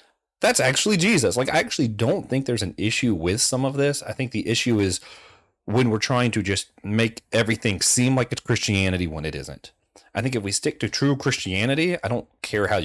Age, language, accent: 30-49, English, American